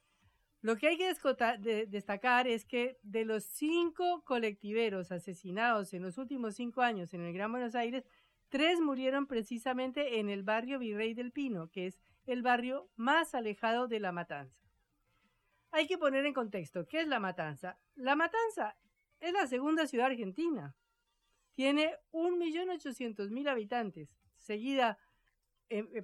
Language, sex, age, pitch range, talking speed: Spanish, female, 50-69, 190-265 Hz, 145 wpm